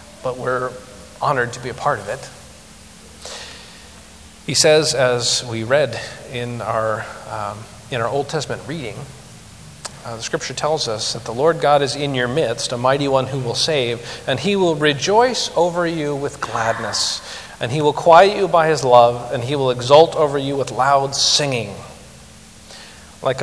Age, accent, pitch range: 40-59, American, 115-145 Hz